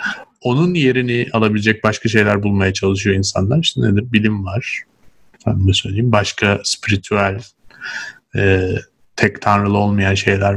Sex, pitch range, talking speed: male, 105-135 Hz, 120 wpm